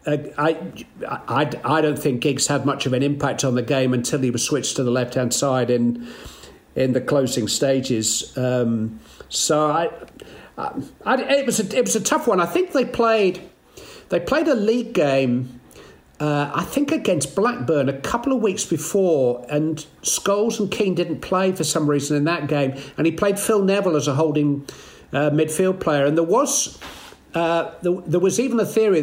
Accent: British